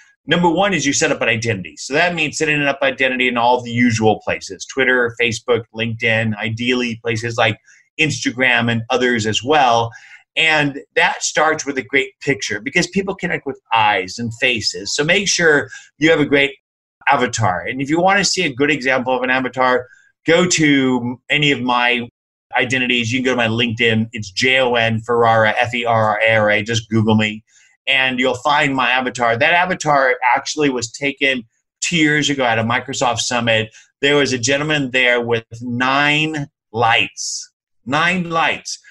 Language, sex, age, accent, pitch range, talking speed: English, male, 30-49, American, 115-150 Hz, 180 wpm